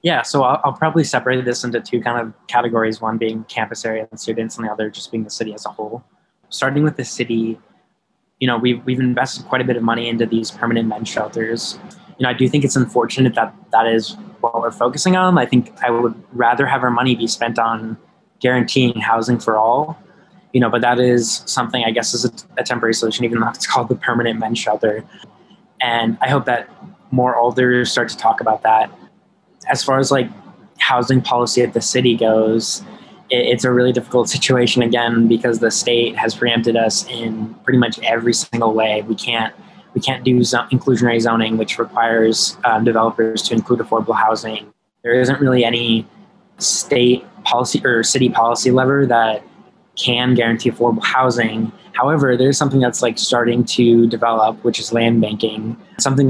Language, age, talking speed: English, 20-39, 195 wpm